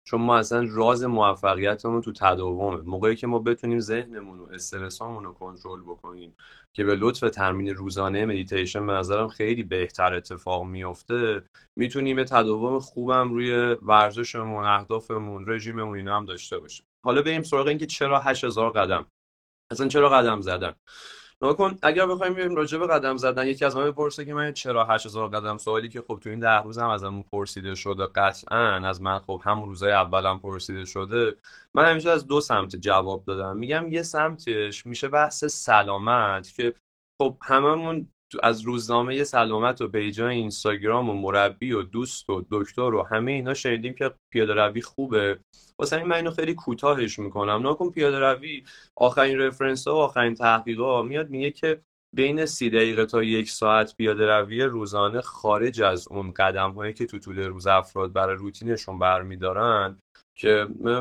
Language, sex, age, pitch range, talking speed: Persian, male, 20-39, 100-130 Hz, 165 wpm